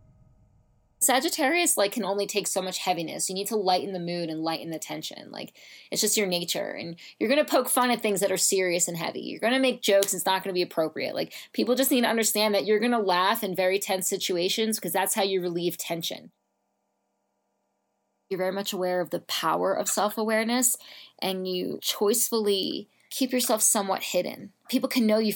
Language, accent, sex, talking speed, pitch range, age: English, American, female, 210 wpm, 175-215 Hz, 20-39